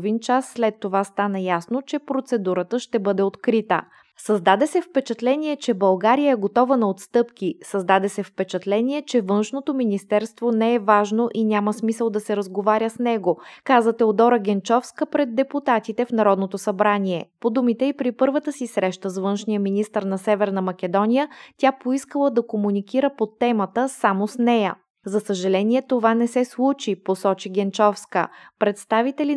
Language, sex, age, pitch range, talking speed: Bulgarian, female, 20-39, 200-245 Hz, 155 wpm